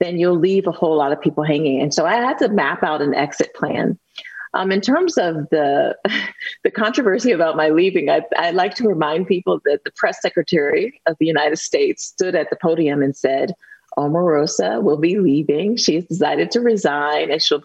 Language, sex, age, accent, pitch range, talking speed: English, female, 30-49, American, 155-255 Hz, 200 wpm